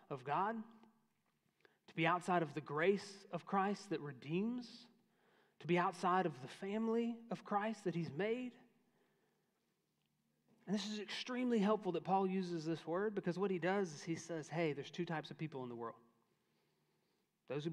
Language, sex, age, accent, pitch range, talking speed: English, male, 30-49, American, 150-190 Hz, 175 wpm